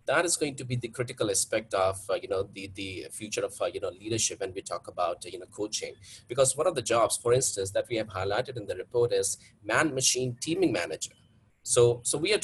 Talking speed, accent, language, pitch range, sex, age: 245 wpm, Indian, English, 105-140 Hz, male, 30-49